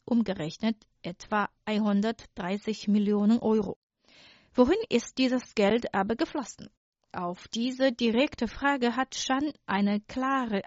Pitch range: 205-255 Hz